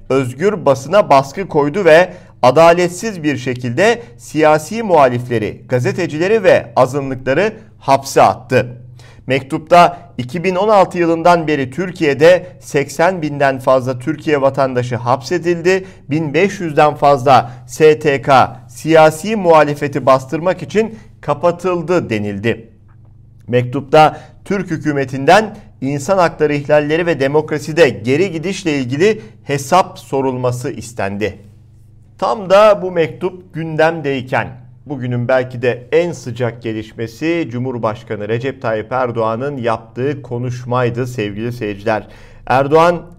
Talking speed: 95 wpm